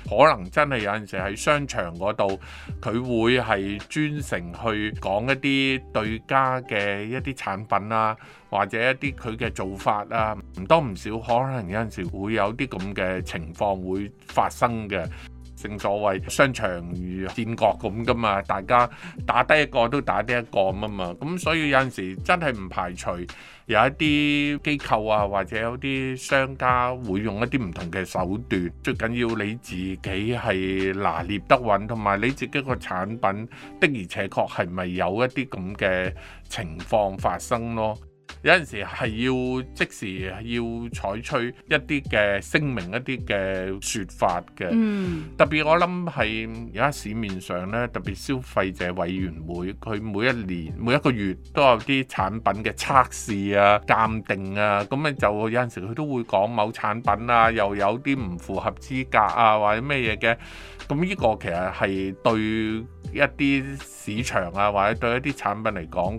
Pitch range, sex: 95-130 Hz, male